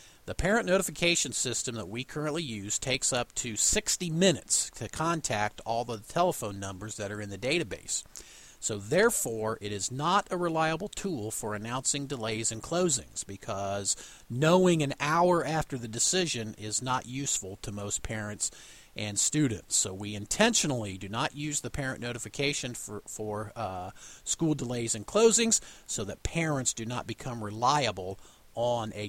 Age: 50-69